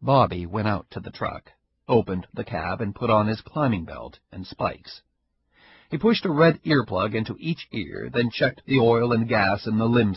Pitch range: 90-140 Hz